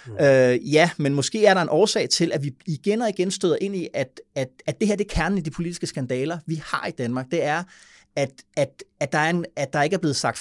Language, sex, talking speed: Danish, male, 275 wpm